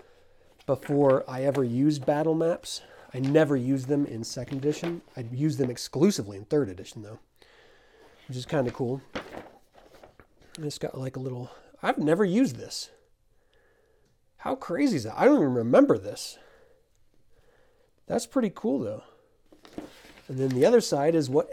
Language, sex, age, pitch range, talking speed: English, male, 30-49, 125-170 Hz, 155 wpm